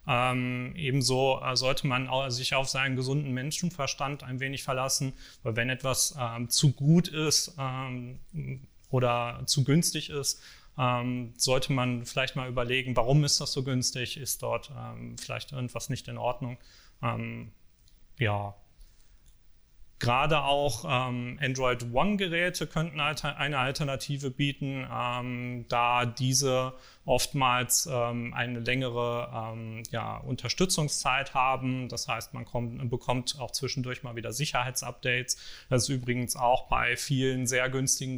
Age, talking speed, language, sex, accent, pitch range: 30-49, 135 wpm, German, male, German, 120-135 Hz